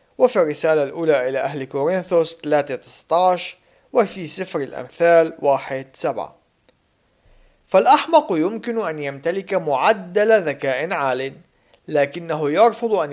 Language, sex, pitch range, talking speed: Arabic, male, 140-205 Hz, 95 wpm